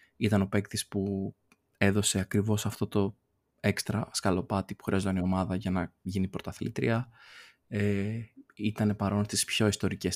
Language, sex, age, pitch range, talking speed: Greek, male, 20-39, 95-115 Hz, 140 wpm